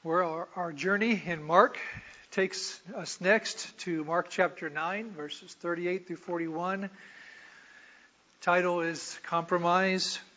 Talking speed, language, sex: 110 wpm, English, male